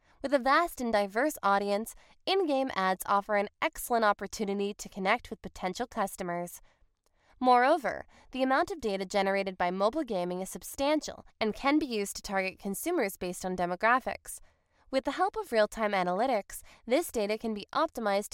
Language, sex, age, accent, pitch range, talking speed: English, female, 20-39, American, 195-275 Hz, 160 wpm